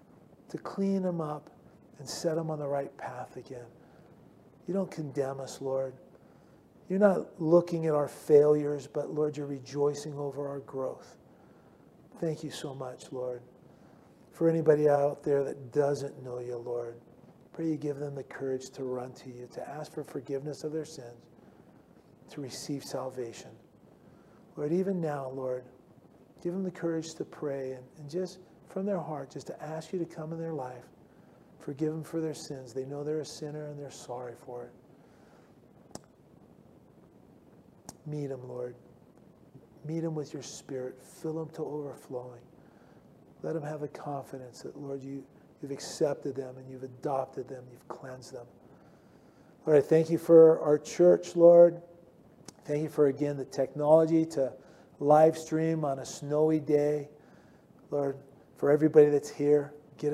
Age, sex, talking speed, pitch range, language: 40-59, male, 160 wpm, 135-155 Hz, English